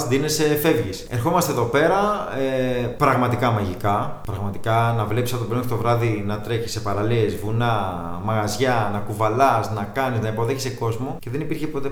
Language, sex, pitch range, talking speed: Greek, male, 120-155 Hz, 165 wpm